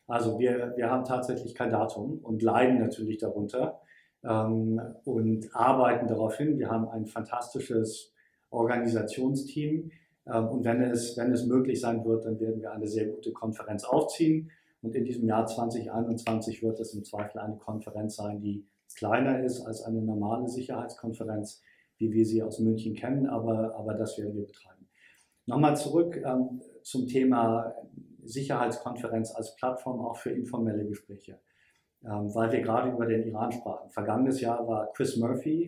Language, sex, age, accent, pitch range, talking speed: German, male, 50-69, German, 110-125 Hz, 160 wpm